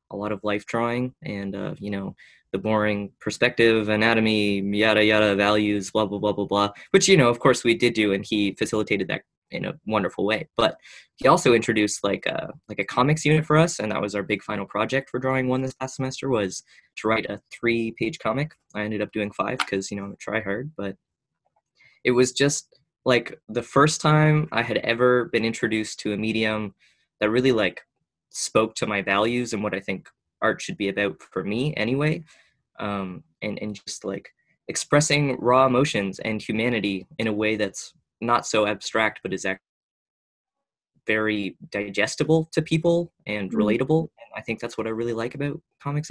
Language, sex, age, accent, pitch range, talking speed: English, male, 20-39, American, 105-125 Hz, 195 wpm